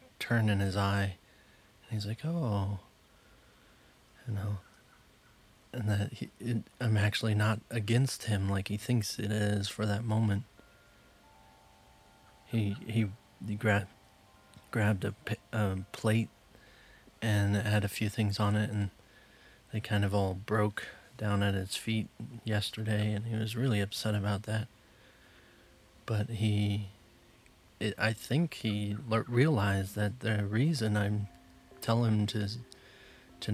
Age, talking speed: 30-49, 140 wpm